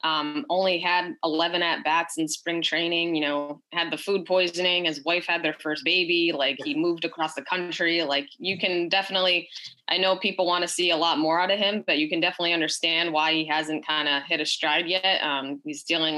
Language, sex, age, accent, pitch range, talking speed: English, female, 20-39, American, 150-180 Hz, 225 wpm